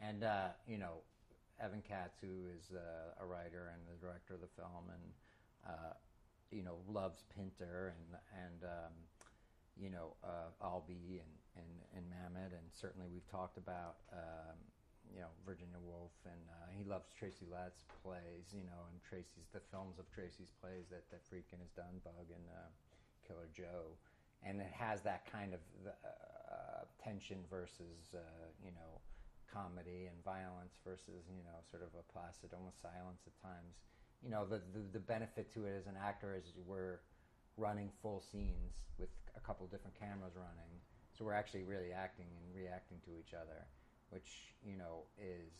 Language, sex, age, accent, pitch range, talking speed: English, male, 40-59, American, 85-100 Hz, 175 wpm